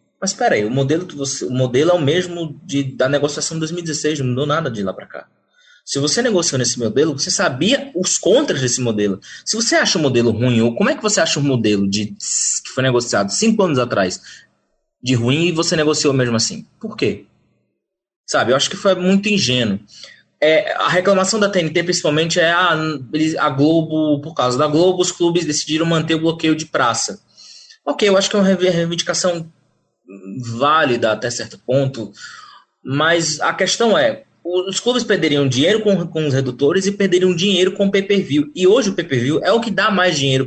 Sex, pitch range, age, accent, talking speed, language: male, 120-175 Hz, 20-39, Brazilian, 200 wpm, Portuguese